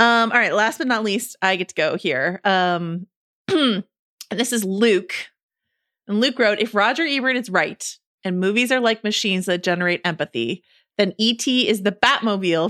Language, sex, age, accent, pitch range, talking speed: English, female, 30-49, American, 180-235 Hz, 175 wpm